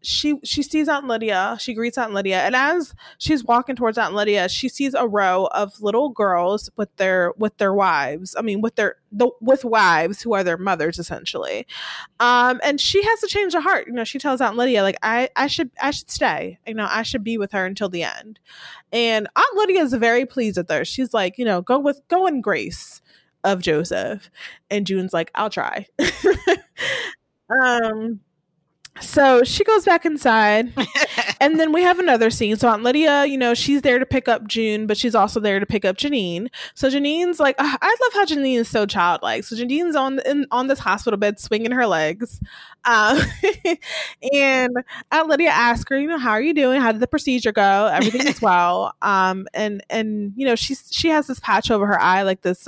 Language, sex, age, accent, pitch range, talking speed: English, female, 20-39, American, 205-280 Hz, 210 wpm